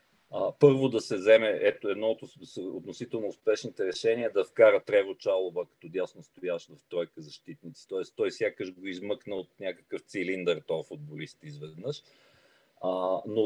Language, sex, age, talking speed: Bulgarian, male, 40-59, 145 wpm